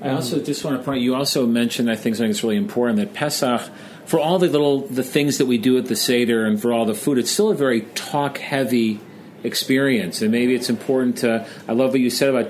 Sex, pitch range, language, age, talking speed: male, 115-140 Hz, English, 40-59, 245 wpm